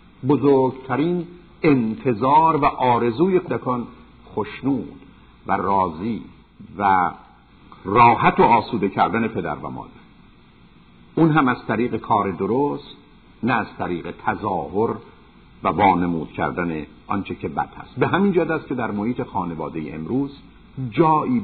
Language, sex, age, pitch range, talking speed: Persian, male, 50-69, 110-140 Hz, 120 wpm